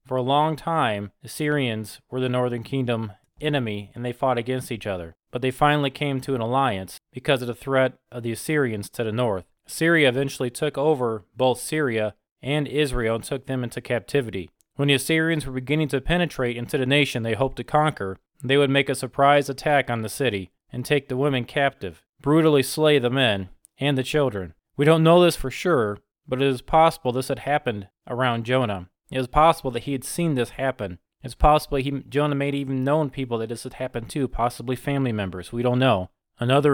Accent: American